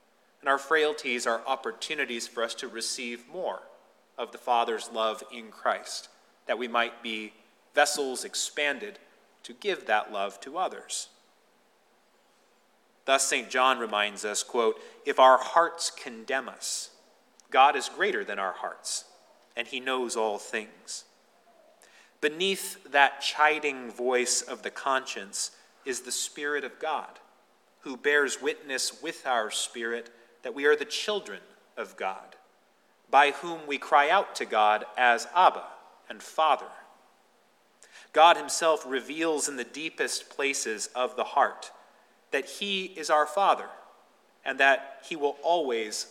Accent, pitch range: American, 120-155 Hz